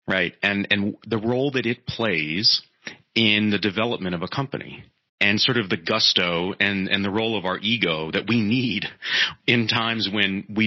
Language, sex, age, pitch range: English, male, 30-49, 100-125 Hz